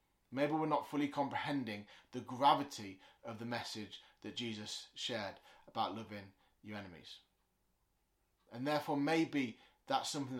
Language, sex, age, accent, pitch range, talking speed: English, male, 30-49, British, 110-145 Hz, 125 wpm